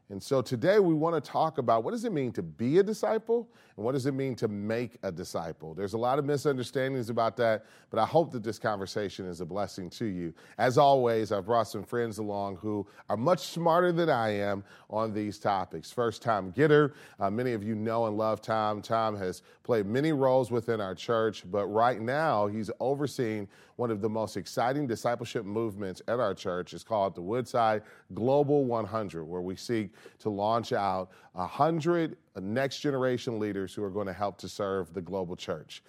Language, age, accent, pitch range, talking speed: English, 30-49, American, 100-130 Hz, 200 wpm